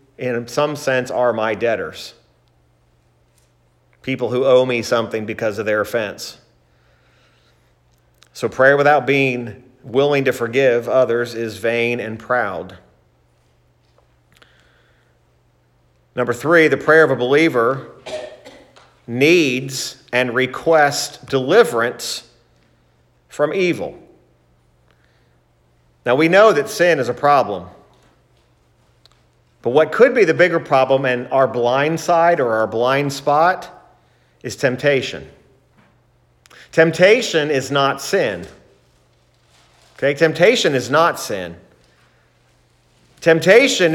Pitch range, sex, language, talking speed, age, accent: 110-145 Hz, male, English, 100 wpm, 40-59, American